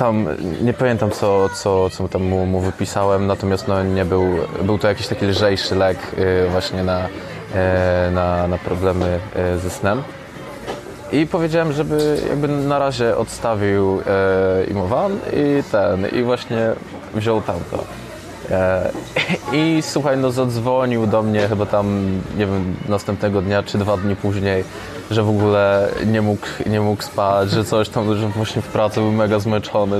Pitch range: 95-110 Hz